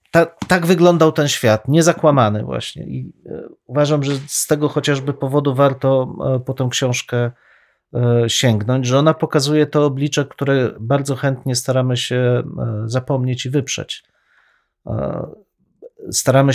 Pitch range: 125-145 Hz